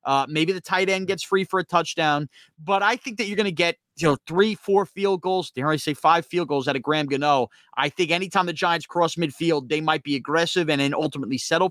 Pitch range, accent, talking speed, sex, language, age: 155-200 Hz, American, 250 wpm, male, English, 30-49